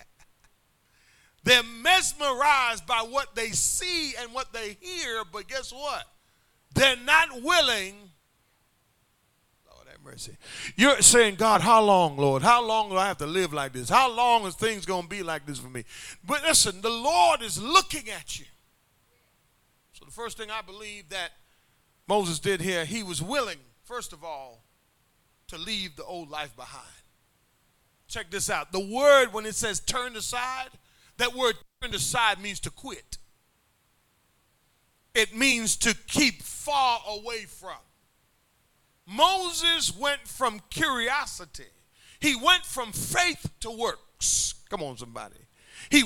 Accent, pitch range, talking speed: American, 185-280 Hz, 145 wpm